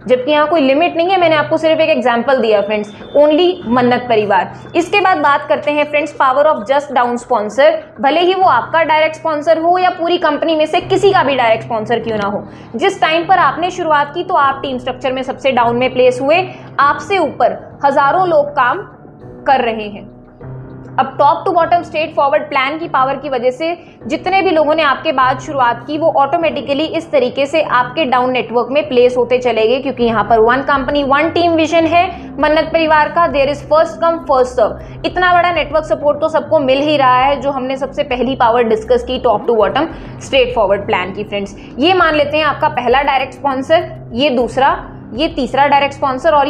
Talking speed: 210 wpm